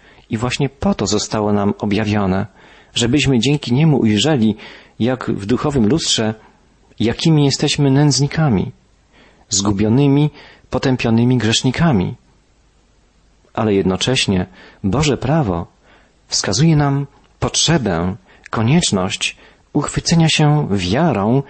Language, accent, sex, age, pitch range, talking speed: Polish, native, male, 40-59, 105-145 Hz, 90 wpm